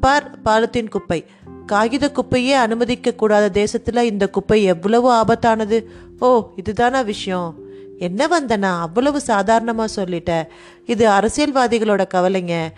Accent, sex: native, female